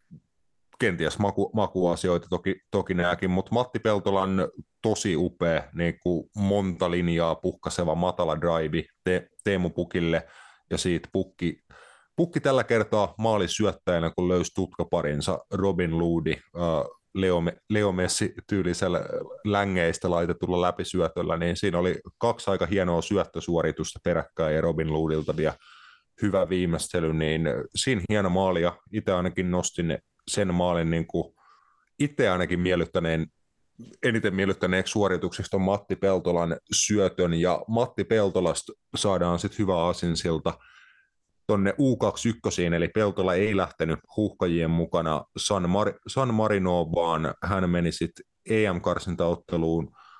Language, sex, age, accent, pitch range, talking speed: Finnish, male, 30-49, native, 85-100 Hz, 120 wpm